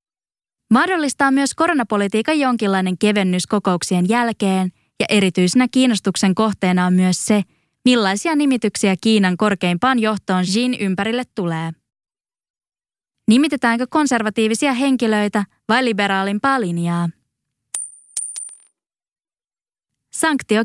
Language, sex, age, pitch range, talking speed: English, female, 20-39, 185-245 Hz, 85 wpm